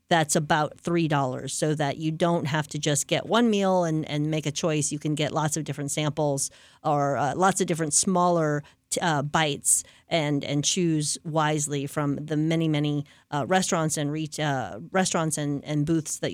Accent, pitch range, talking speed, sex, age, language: American, 145-185 Hz, 190 wpm, female, 40-59, English